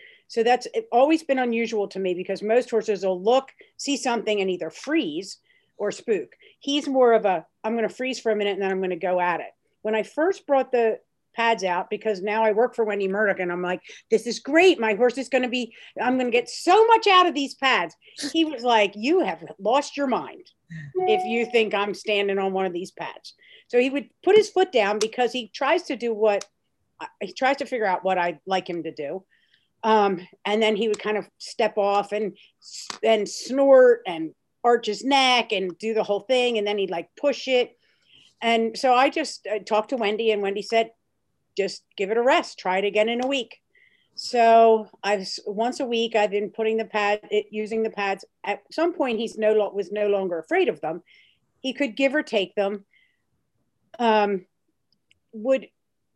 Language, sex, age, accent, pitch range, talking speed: English, female, 50-69, American, 205-265 Hz, 215 wpm